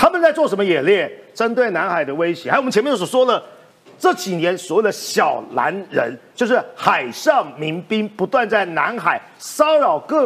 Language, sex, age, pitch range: Chinese, male, 50-69, 175-275 Hz